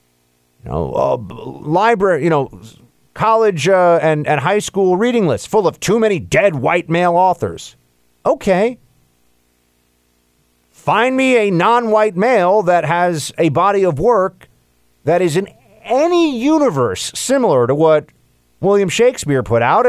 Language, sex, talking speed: English, male, 140 wpm